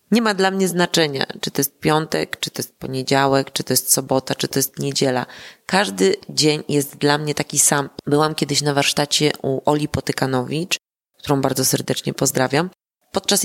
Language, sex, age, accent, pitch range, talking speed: Polish, female, 30-49, native, 150-185 Hz, 180 wpm